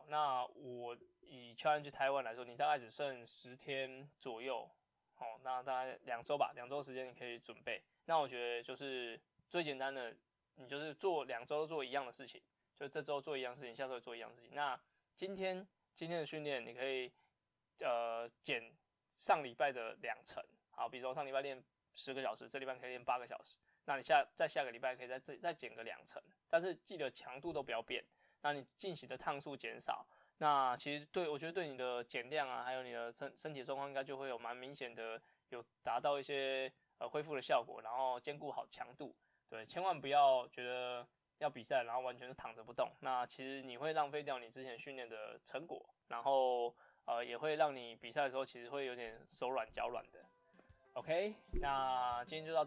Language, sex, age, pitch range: Chinese, male, 20-39, 125-150 Hz